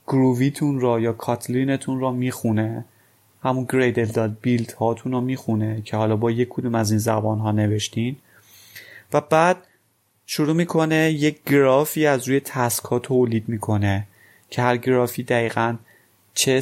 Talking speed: 135 wpm